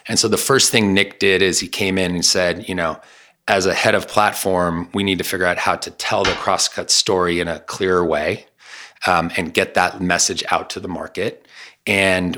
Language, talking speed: English, 220 wpm